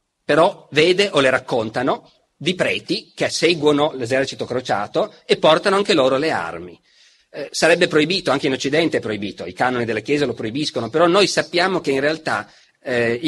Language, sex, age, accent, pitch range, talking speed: Italian, male, 40-59, native, 130-165 Hz, 170 wpm